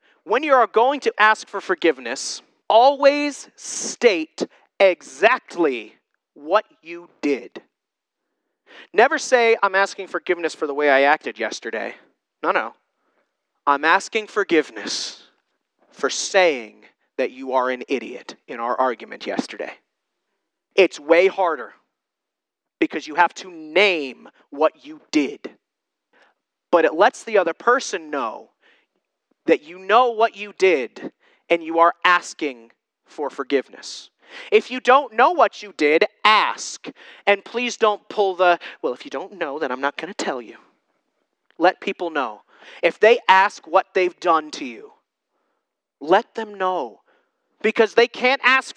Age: 30-49